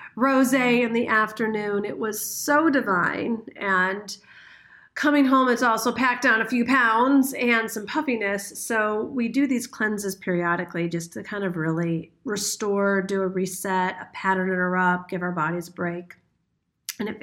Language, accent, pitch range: English, American, 195-250 Hz